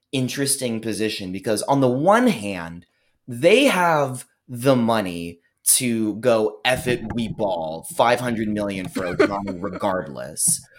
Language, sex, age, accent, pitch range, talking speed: English, male, 20-39, American, 100-140 Hz, 120 wpm